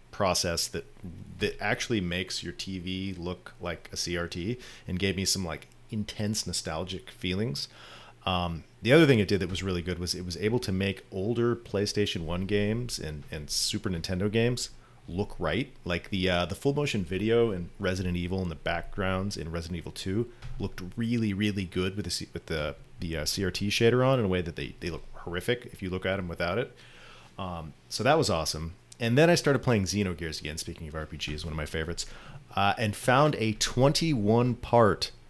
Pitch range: 85-115 Hz